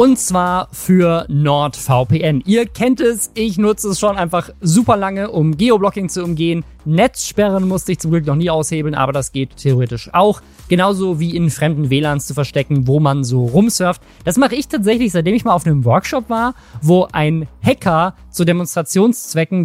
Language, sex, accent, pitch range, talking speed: German, male, German, 150-205 Hz, 175 wpm